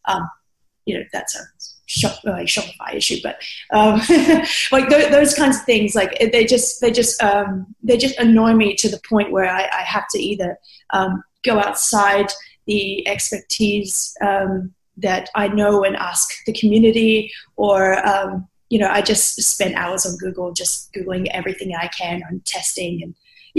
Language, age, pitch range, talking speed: English, 20-39, 185-220 Hz, 170 wpm